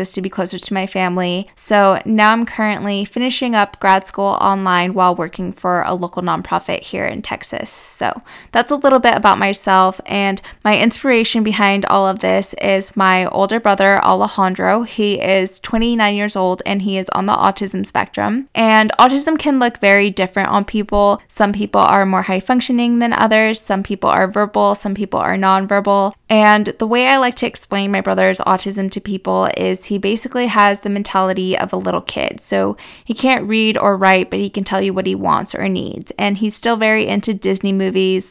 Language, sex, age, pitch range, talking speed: English, female, 20-39, 190-215 Hz, 195 wpm